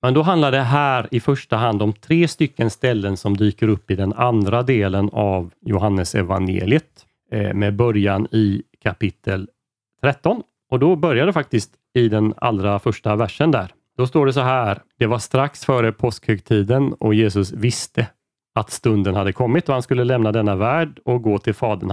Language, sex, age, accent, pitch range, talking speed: Swedish, male, 30-49, native, 100-125 Hz, 180 wpm